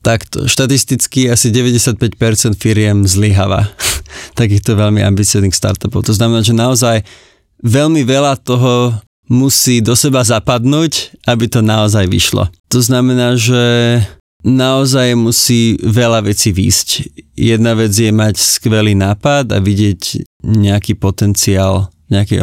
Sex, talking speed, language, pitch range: male, 125 wpm, Slovak, 100-120 Hz